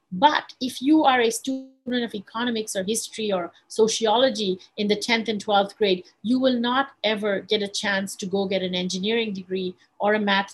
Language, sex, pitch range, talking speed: English, female, 200-245 Hz, 195 wpm